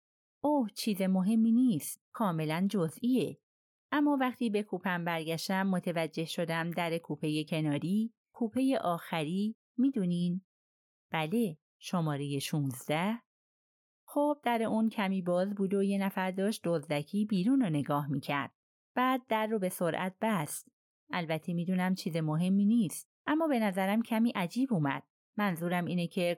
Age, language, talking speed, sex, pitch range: 30-49, Persian, 130 wpm, female, 165-220 Hz